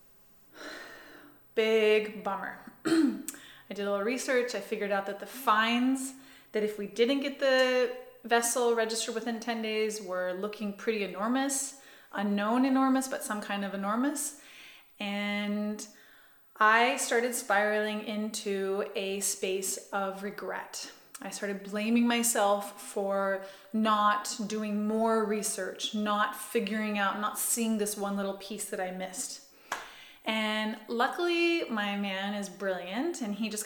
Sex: female